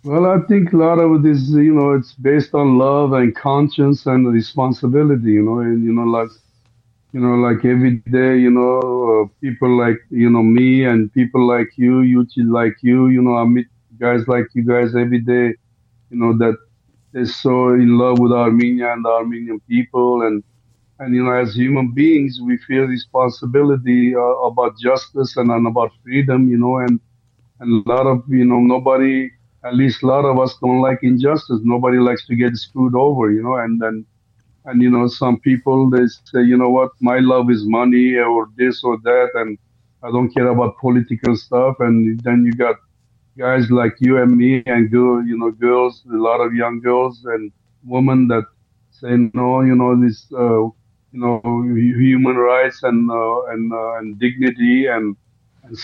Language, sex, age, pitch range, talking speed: English, male, 50-69, 115-130 Hz, 190 wpm